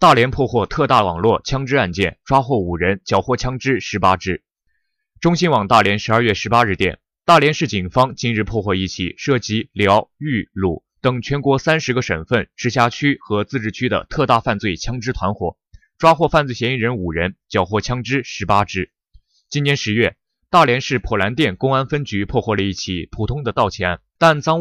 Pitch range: 100-135 Hz